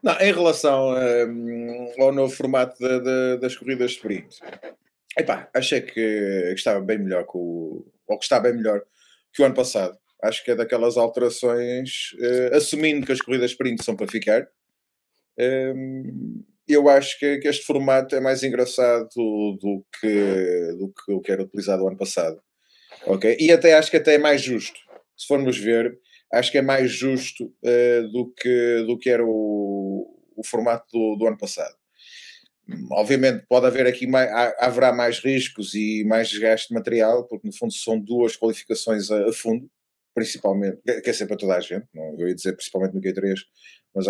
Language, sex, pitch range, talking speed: Portuguese, male, 110-135 Hz, 180 wpm